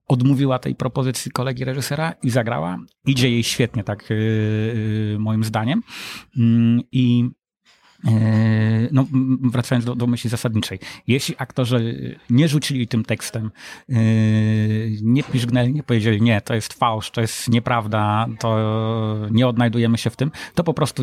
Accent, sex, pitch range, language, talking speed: native, male, 110-125 Hz, Polish, 130 wpm